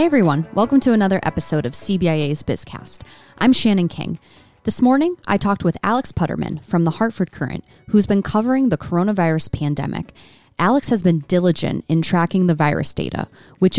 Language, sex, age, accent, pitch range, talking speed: English, female, 20-39, American, 155-200 Hz, 170 wpm